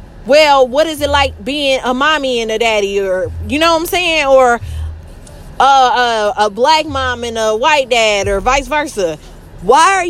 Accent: American